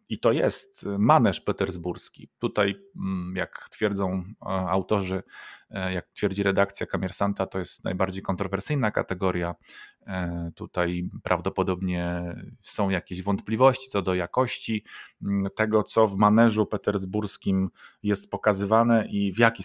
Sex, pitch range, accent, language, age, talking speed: male, 95-110 Hz, native, Polish, 30-49, 110 wpm